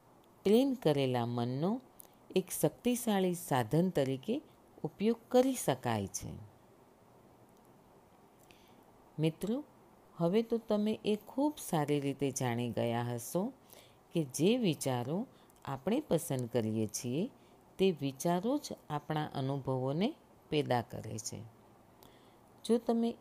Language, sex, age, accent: Gujarati, female, 40-59, native